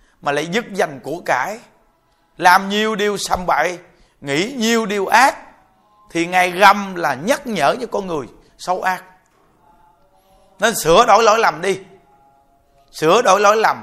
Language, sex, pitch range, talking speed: Vietnamese, male, 170-220 Hz, 155 wpm